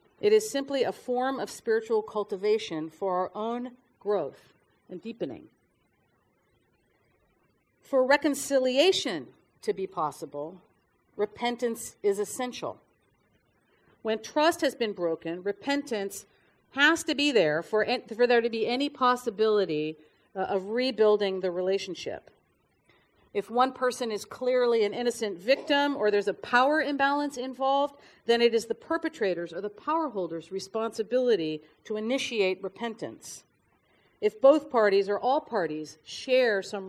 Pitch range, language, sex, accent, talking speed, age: 200-270 Hz, English, female, American, 130 wpm, 40-59